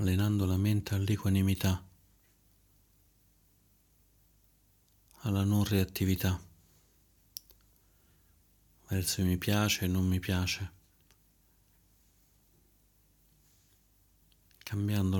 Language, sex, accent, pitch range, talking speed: Italian, male, native, 90-100 Hz, 65 wpm